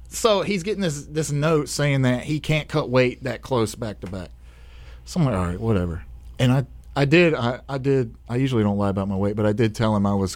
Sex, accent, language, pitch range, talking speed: male, American, English, 95-130 Hz, 255 wpm